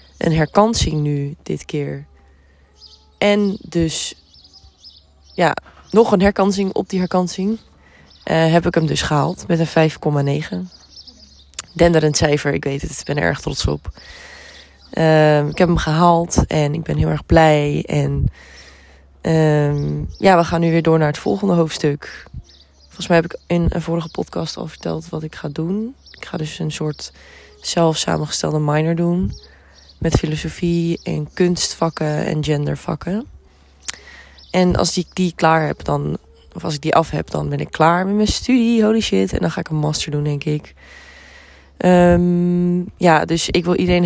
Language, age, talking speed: Dutch, 20-39, 170 wpm